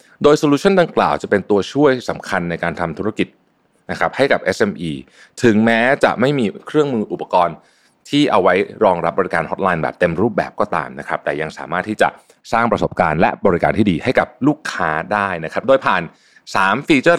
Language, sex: Thai, male